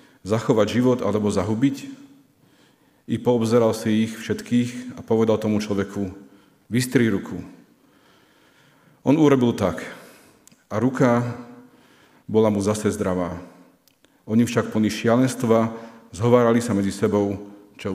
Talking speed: 110 wpm